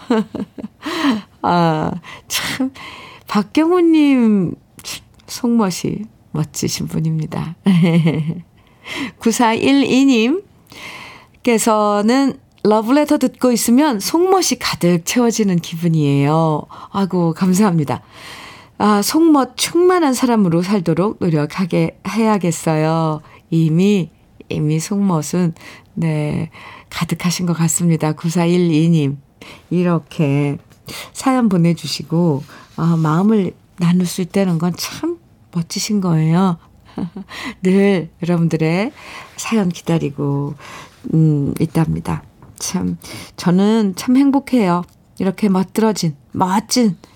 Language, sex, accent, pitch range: Korean, female, native, 160-220 Hz